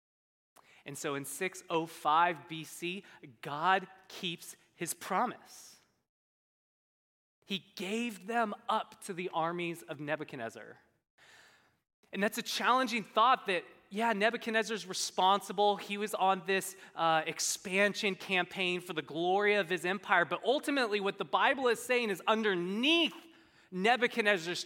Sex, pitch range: male, 175-225 Hz